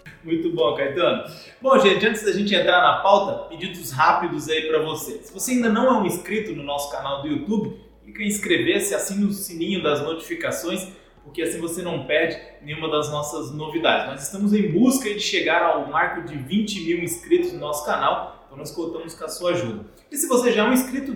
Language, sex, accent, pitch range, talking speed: Portuguese, male, Brazilian, 155-230 Hz, 215 wpm